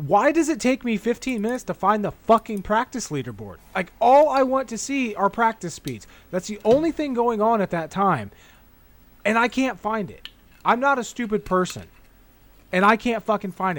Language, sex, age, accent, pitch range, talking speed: English, male, 30-49, American, 145-220 Hz, 200 wpm